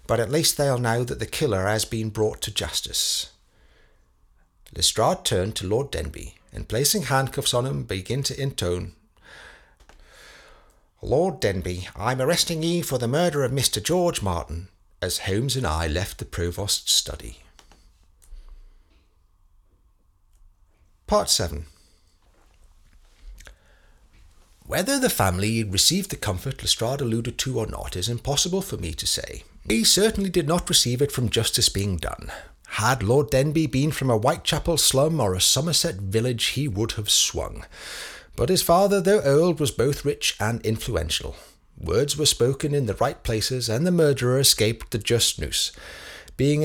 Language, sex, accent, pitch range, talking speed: English, male, British, 90-145 Hz, 150 wpm